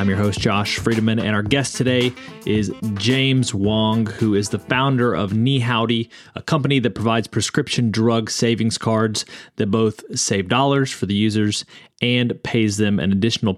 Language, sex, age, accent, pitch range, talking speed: English, male, 30-49, American, 105-125 Hz, 170 wpm